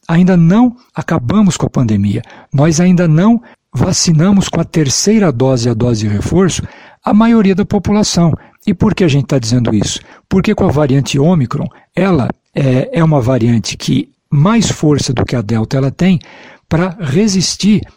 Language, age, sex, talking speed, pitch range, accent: Portuguese, 60-79, male, 170 wpm, 135-195 Hz, Brazilian